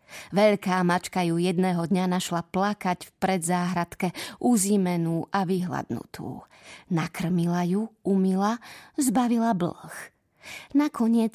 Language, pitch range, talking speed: Slovak, 180-225 Hz, 95 wpm